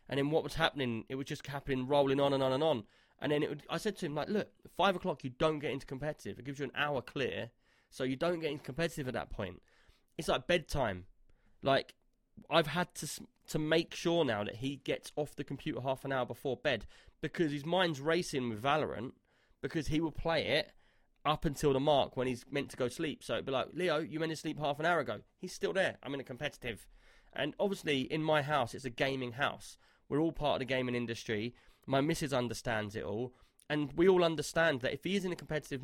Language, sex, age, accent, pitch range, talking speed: English, male, 20-39, British, 130-160 Hz, 240 wpm